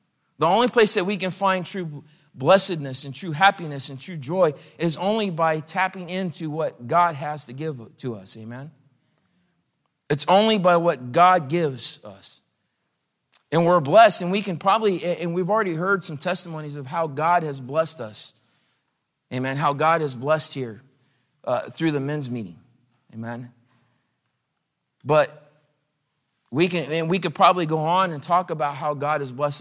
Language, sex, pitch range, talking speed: English, male, 140-175 Hz, 165 wpm